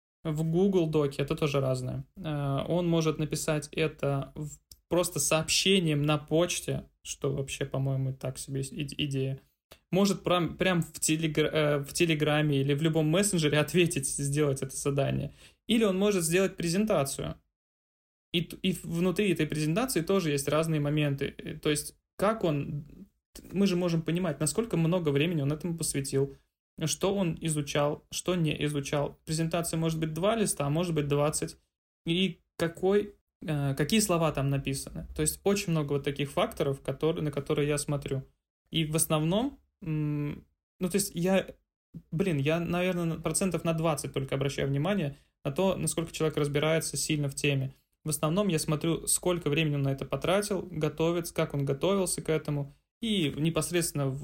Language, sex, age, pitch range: Russian, male, 20-39, 145-175 Hz